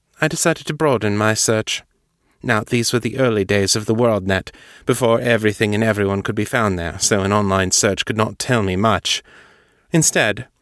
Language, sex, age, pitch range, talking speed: English, male, 30-49, 110-135 Hz, 185 wpm